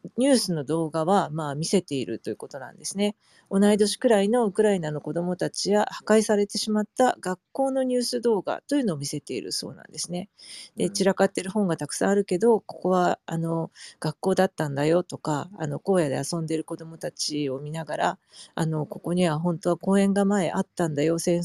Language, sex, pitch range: Japanese, female, 160-205 Hz